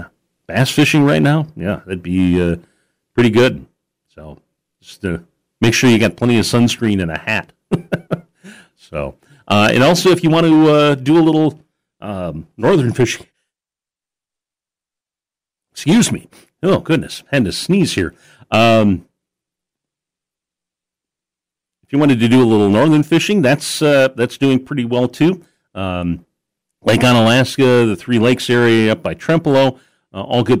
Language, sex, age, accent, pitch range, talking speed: English, male, 40-59, American, 100-140 Hz, 150 wpm